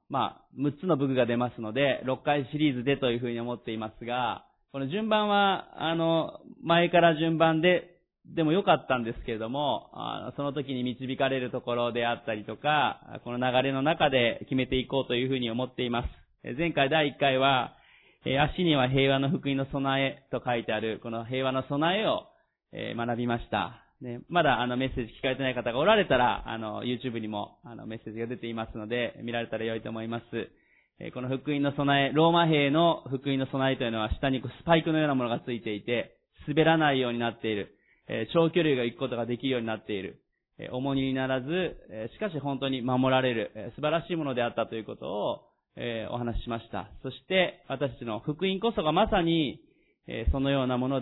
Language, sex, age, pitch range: Japanese, male, 30-49, 120-150 Hz